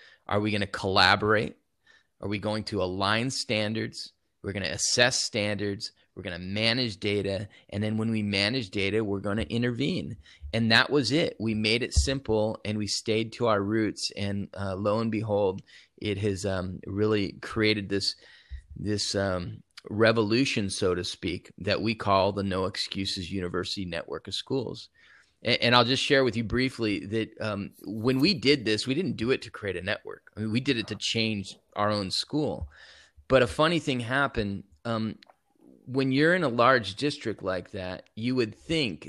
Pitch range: 100-115 Hz